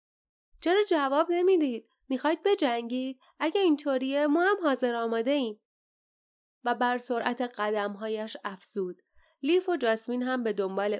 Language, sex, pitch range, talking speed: Persian, female, 215-295 Hz, 125 wpm